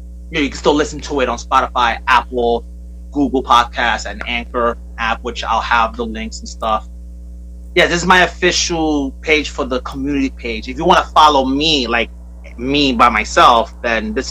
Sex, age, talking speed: male, 30-49, 185 wpm